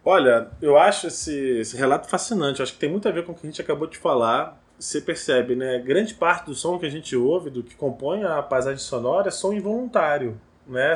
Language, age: Portuguese, 20-39